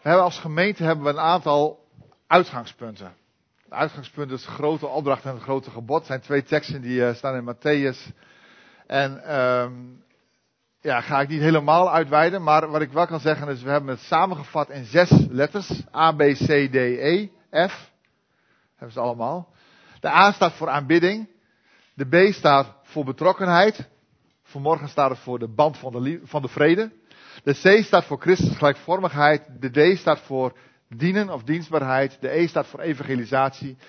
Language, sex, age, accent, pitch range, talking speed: Dutch, male, 50-69, Dutch, 135-165 Hz, 175 wpm